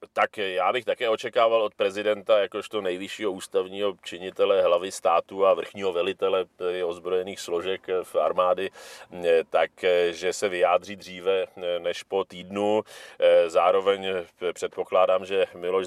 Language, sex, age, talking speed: Czech, male, 40-59, 120 wpm